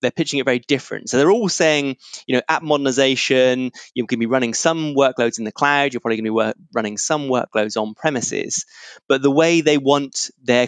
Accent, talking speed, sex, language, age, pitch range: British, 225 wpm, male, English, 20-39, 120-150 Hz